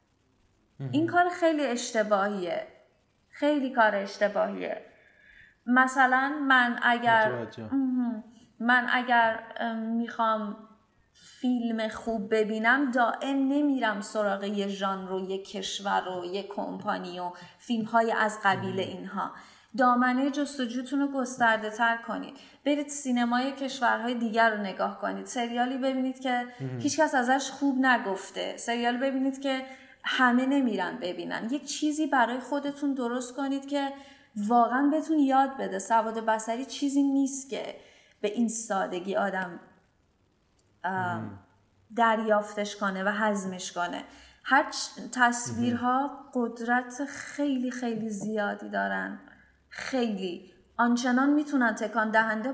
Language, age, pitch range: Persian, 30-49, 210-265 Hz